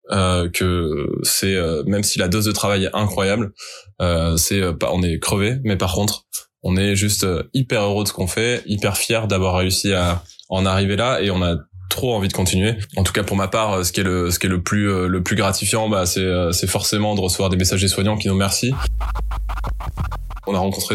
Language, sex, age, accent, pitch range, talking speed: French, male, 20-39, French, 90-105 Hz, 245 wpm